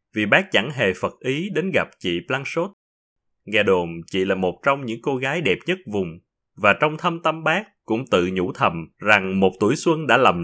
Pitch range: 100-165 Hz